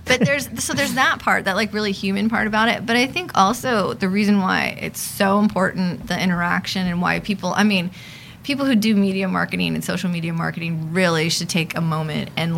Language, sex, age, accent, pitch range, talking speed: English, female, 20-39, American, 170-200 Hz, 215 wpm